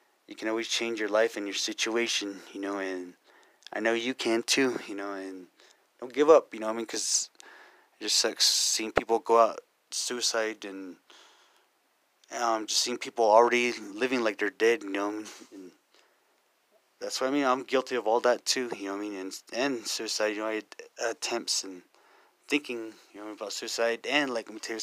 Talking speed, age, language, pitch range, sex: 205 wpm, 20-39, English, 105-125 Hz, male